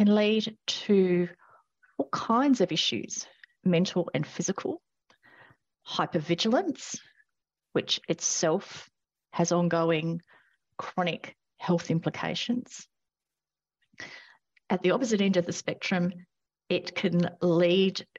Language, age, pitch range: English, 40-59, 165-205 Hz